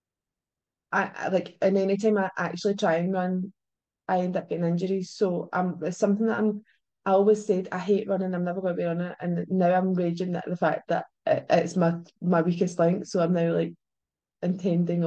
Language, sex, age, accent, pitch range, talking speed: English, female, 20-39, British, 180-210 Hz, 210 wpm